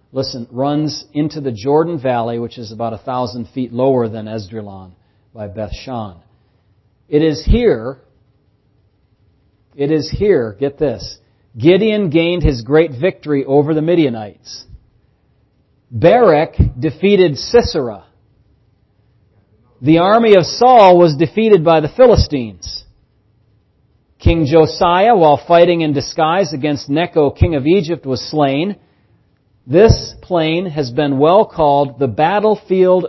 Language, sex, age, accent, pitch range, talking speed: English, male, 40-59, American, 110-165 Hz, 120 wpm